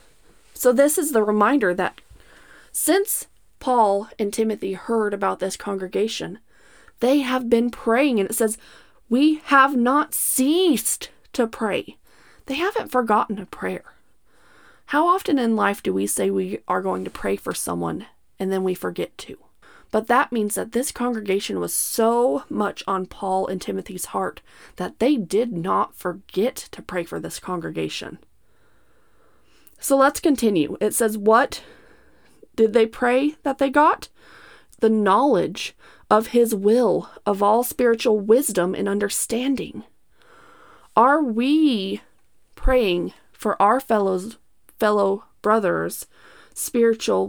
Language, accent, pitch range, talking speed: English, American, 190-260 Hz, 135 wpm